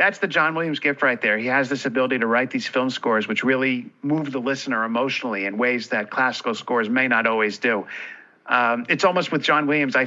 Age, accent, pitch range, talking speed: 50-69, American, 125-155 Hz, 225 wpm